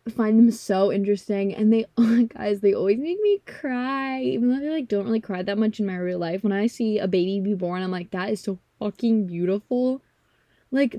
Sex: female